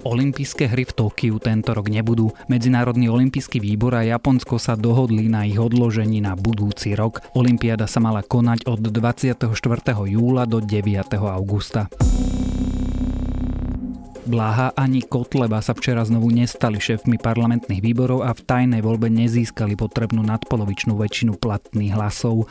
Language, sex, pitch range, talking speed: Slovak, male, 110-125 Hz, 135 wpm